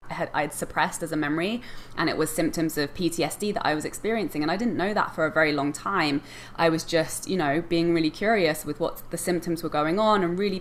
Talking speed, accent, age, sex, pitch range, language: 245 wpm, British, 20-39, female, 150-170 Hz, English